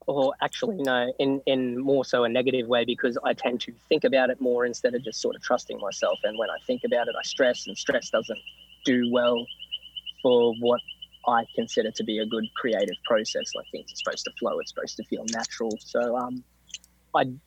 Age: 20-39